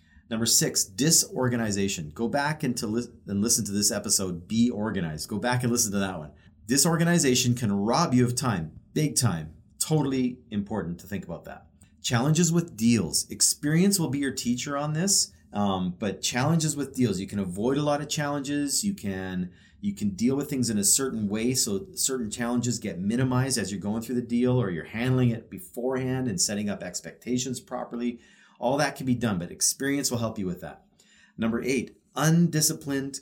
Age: 40-59